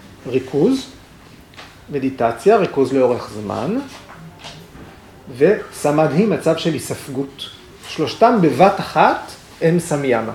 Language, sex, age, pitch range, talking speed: Hebrew, male, 30-49, 130-195 Hz, 85 wpm